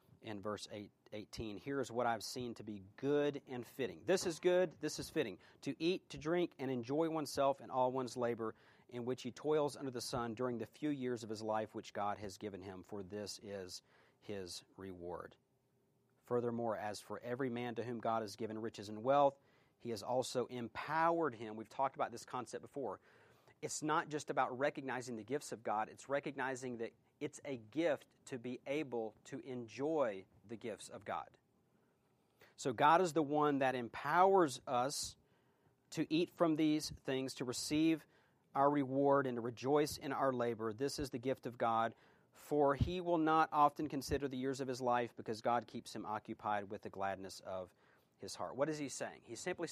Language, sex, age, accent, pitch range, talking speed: English, male, 40-59, American, 115-145 Hz, 195 wpm